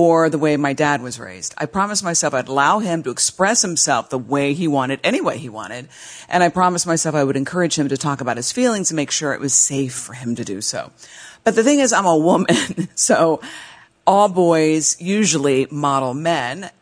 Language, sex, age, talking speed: English, female, 50-69, 220 wpm